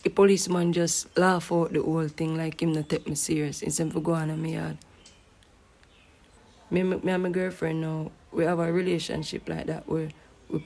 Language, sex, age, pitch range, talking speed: English, female, 20-39, 150-170 Hz, 210 wpm